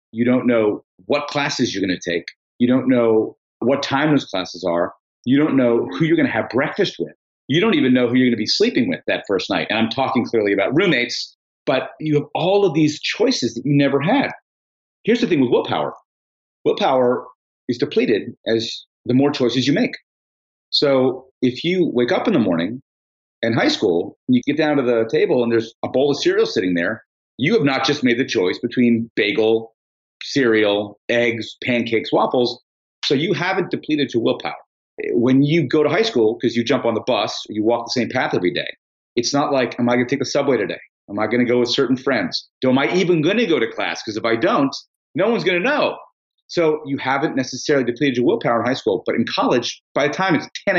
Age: 40-59